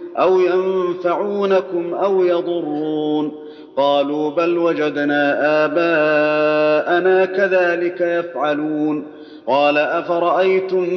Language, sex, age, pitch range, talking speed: Arabic, male, 40-59, 150-185 Hz, 65 wpm